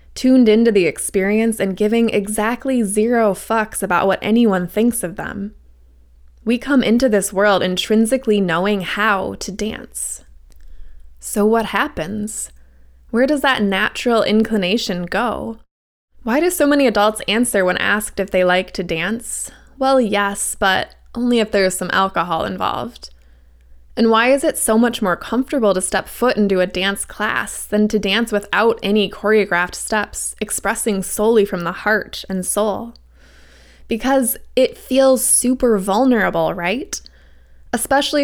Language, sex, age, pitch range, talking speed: English, female, 20-39, 180-225 Hz, 145 wpm